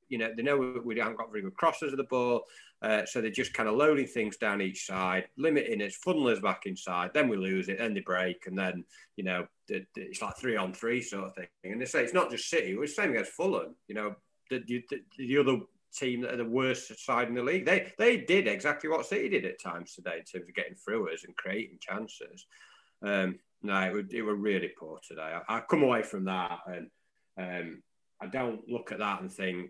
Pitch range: 90-115 Hz